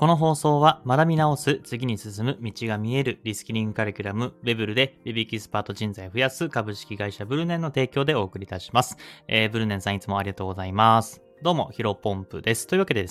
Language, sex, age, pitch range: Japanese, male, 20-39, 100-135 Hz